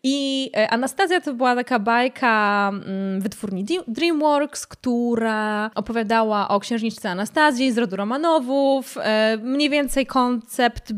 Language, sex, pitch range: Polish, female, 210-265 Hz